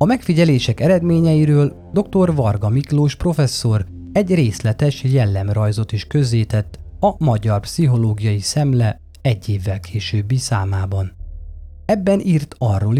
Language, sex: Hungarian, male